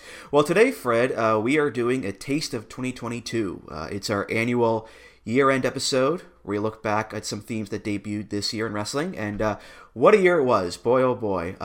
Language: English